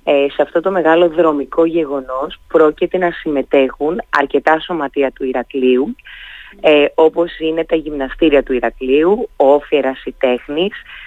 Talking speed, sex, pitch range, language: 135 wpm, female, 145-175 Hz, Greek